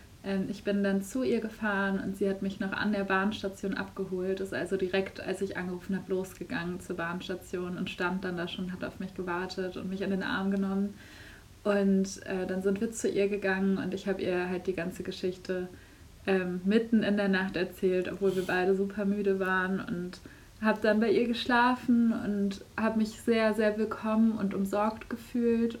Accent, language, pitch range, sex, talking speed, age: German, German, 185-200 Hz, female, 195 wpm, 20-39